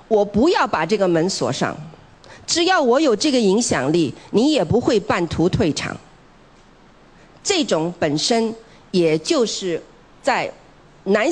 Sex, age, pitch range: female, 50-69, 170-240 Hz